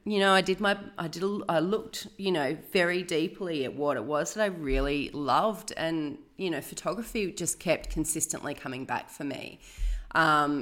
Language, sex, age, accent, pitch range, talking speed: English, female, 30-49, Australian, 145-180 Hz, 185 wpm